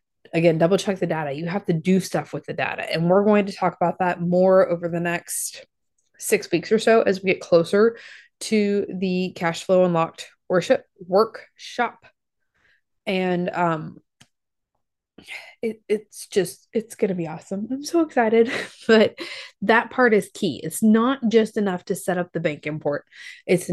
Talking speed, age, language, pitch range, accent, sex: 170 wpm, 20-39, English, 175-220 Hz, American, female